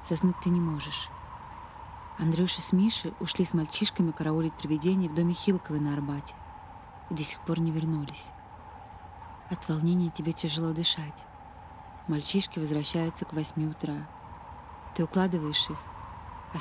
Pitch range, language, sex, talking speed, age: 155-190 Hz, Russian, female, 135 wpm, 20-39